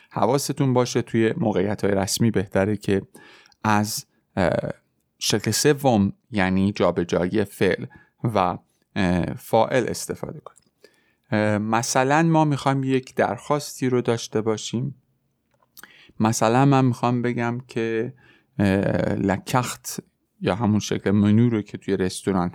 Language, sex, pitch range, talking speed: Persian, male, 100-130 Hz, 105 wpm